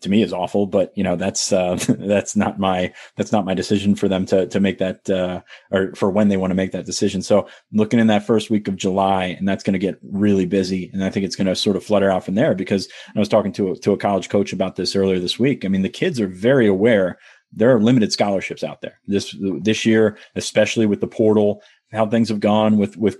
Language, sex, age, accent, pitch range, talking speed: English, male, 30-49, American, 95-110 Hz, 260 wpm